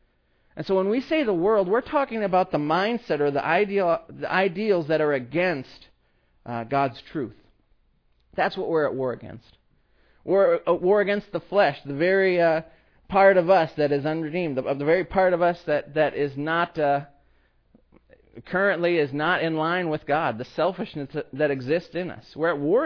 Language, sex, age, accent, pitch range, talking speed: English, male, 40-59, American, 135-180 Hz, 180 wpm